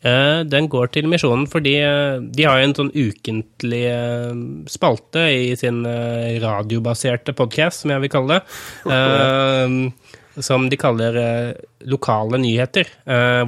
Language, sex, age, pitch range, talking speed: Danish, male, 20-39, 120-145 Hz, 120 wpm